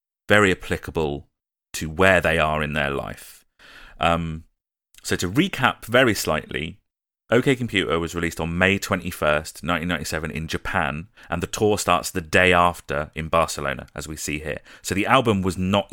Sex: male